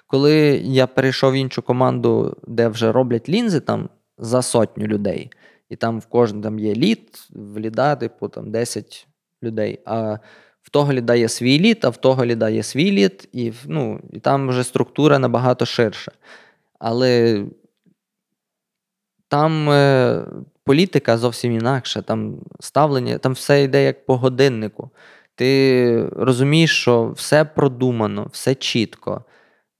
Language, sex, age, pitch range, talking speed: Ukrainian, male, 20-39, 115-150 Hz, 140 wpm